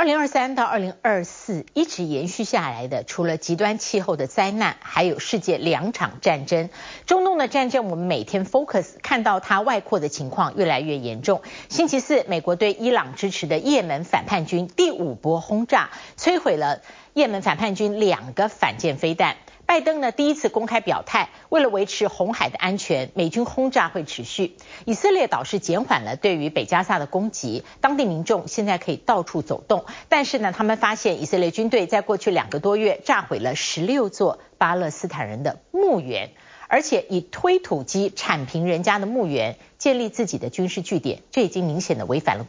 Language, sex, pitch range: Chinese, female, 170-235 Hz